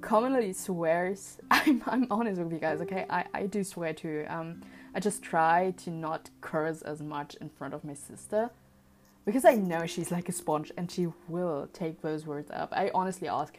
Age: 20-39